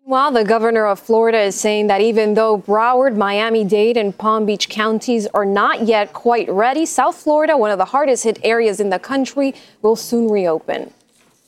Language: English